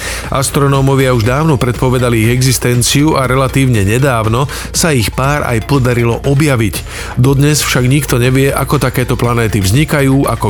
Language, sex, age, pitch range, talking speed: Slovak, male, 40-59, 115-145 Hz, 135 wpm